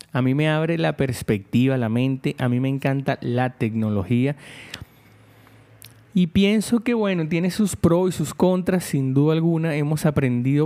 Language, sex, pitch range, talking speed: Spanish, male, 125-160 Hz, 165 wpm